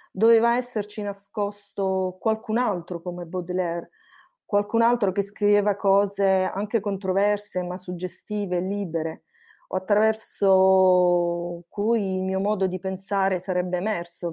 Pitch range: 185-220 Hz